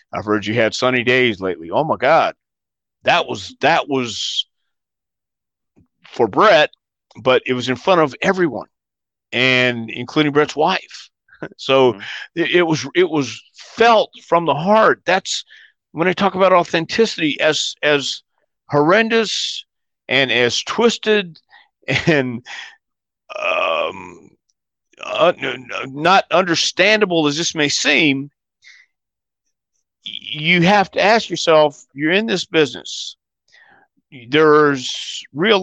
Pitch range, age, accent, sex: 120-180 Hz, 50-69, American, male